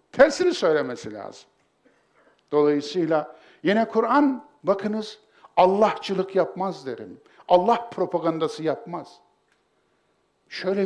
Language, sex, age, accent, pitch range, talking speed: Turkish, male, 60-79, native, 135-220 Hz, 75 wpm